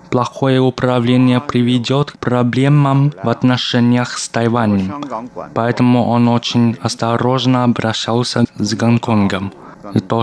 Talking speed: 105 wpm